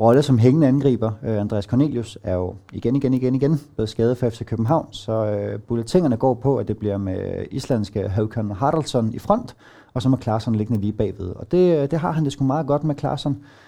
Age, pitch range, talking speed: 30-49, 105-135 Hz, 215 wpm